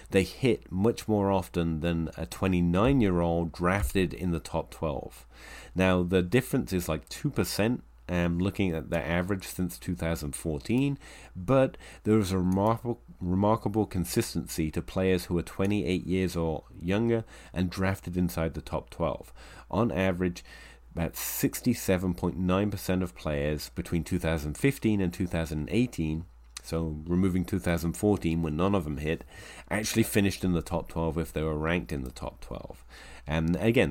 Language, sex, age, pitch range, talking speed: English, male, 30-49, 80-95 Hz, 140 wpm